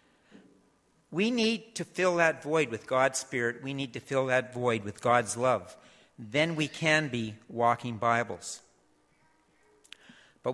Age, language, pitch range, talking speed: 50-69, English, 120-160 Hz, 140 wpm